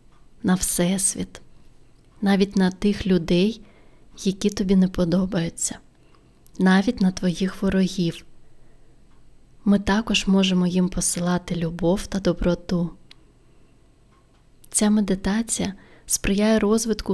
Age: 20-39